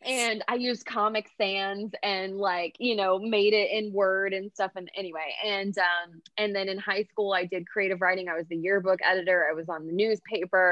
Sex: female